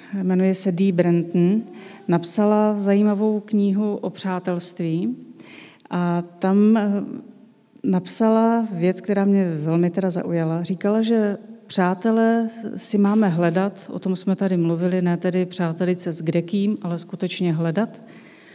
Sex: female